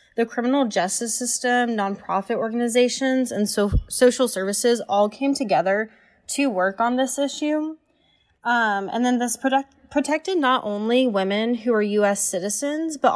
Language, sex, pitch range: English, female, 195-245 Hz